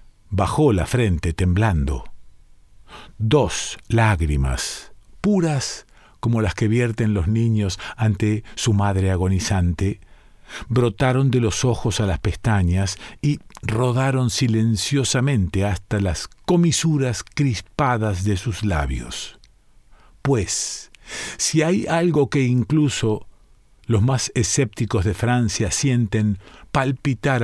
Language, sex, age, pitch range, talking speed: Spanish, male, 50-69, 100-130 Hz, 105 wpm